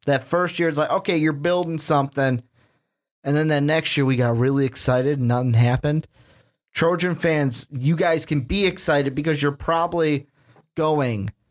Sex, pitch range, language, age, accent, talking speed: male, 135-175 Hz, English, 30-49, American, 165 wpm